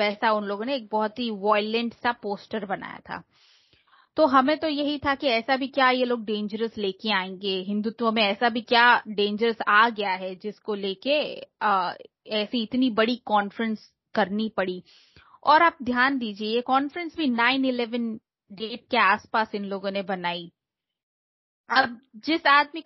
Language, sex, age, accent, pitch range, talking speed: Hindi, female, 20-39, native, 205-255 Hz, 165 wpm